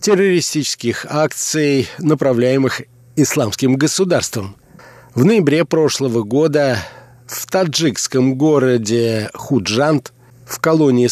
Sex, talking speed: male, 80 wpm